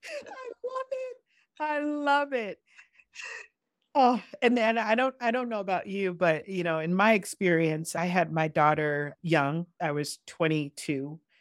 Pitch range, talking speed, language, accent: 160-215 Hz, 160 wpm, English, American